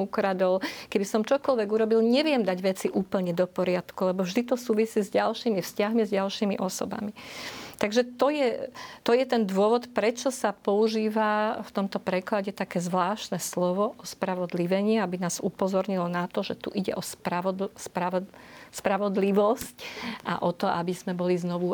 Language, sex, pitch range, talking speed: Slovak, female, 195-230 Hz, 160 wpm